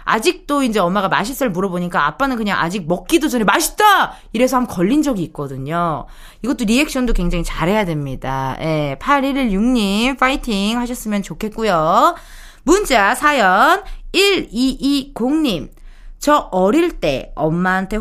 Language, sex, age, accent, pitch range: Korean, female, 20-39, native, 190-285 Hz